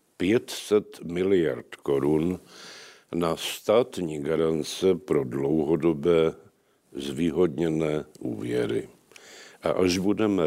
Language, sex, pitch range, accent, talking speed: Czech, male, 80-95 Hz, native, 75 wpm